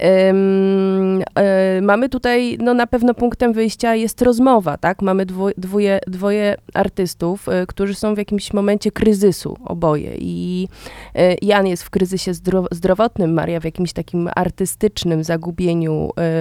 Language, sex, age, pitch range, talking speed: Polish, female, 30-49, 175-220 Hz, 120 wpm